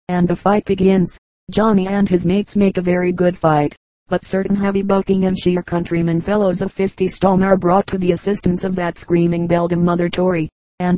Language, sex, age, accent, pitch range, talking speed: English, female, 40-59, American, 180-195 Hz, 200 wpm